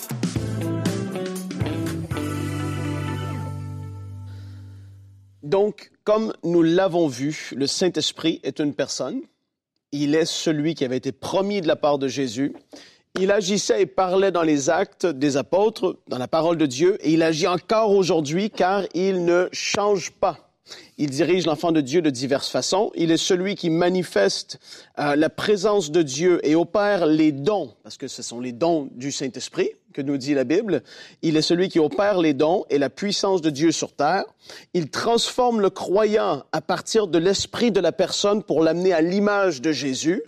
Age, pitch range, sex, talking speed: 40-59, 145-200 Hz, male, 165 wpm